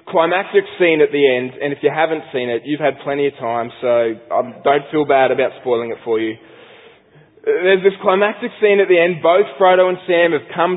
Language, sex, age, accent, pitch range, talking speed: English, male, 20-39, Australian, 130-175 Hz, 210 wpm